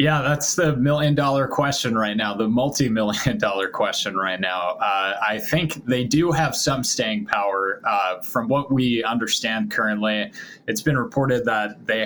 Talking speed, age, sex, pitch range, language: 175 wpm, 20-39, male, 110-135 Hz, English